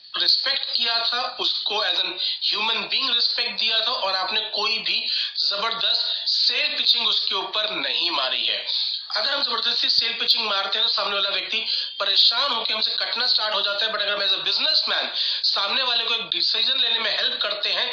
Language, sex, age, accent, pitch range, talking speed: Hindi, male, 40-59, native, 195-235 Hz, 145 wpm